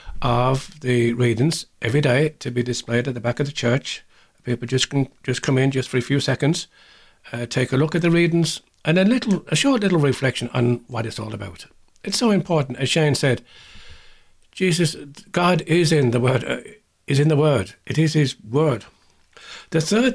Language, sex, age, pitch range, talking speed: English, male, 60-79, 115-155 Hz, 200 wpm